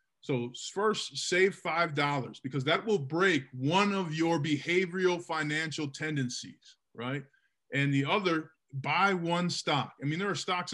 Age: 20-39